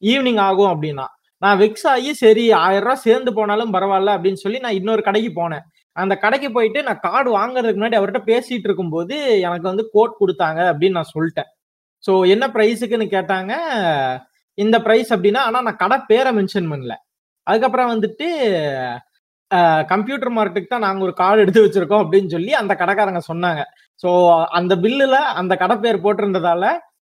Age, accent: 20-39, native